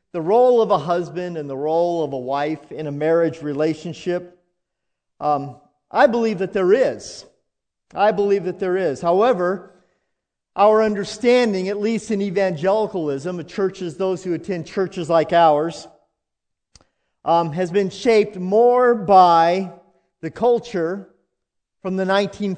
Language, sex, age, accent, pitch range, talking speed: English, male, 40-59, American, 160-195 Hz, 135 wpm